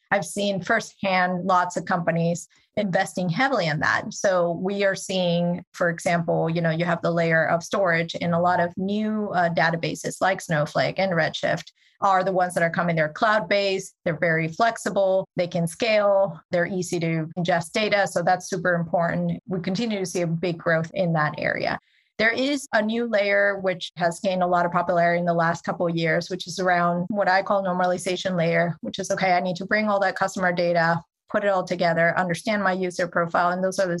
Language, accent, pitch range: English, American, 170-195 Hz